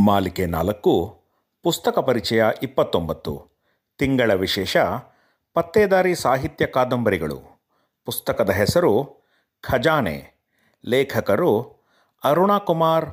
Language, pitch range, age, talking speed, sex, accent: Kannada, 120-160 Hz, 40-59, 70 wpm, male, native